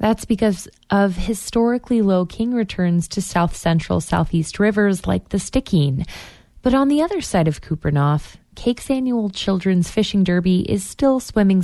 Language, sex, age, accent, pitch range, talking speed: English, female, 20-39, American, 165-220 Hz, 150 wpm